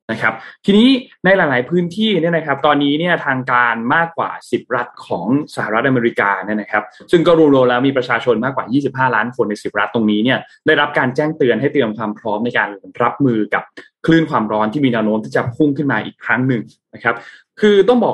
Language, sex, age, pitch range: Thai, male, 20-39, 120-160 Hz